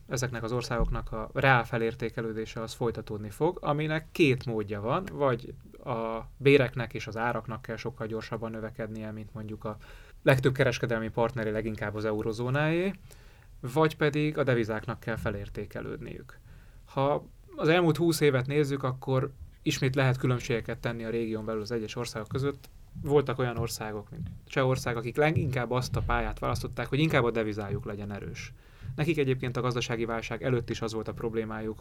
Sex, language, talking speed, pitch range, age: male, Hungarian, 160 wpm, 110-135 Hz, 30-49